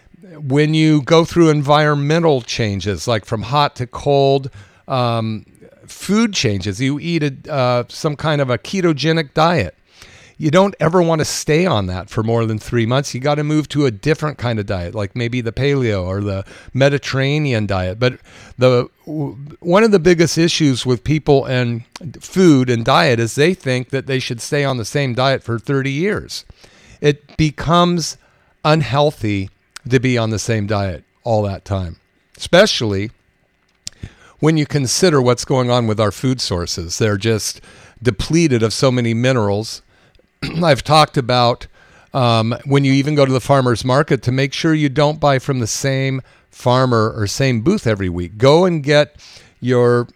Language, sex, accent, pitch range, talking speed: English, male, American, 115-150 Hz, 170 wpm